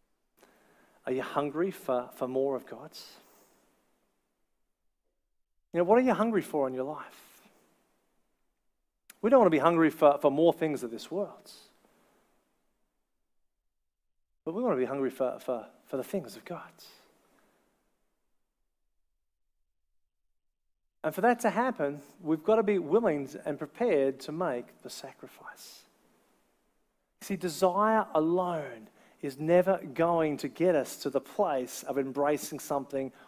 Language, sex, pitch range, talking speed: English, male, 135-205 Hz, 135 wpm